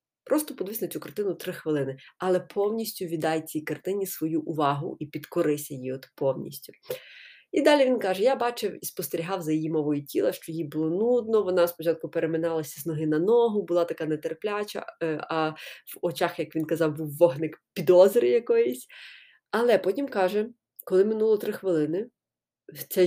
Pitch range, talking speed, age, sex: 165-235 Hz, 165 wpm, 20-39, female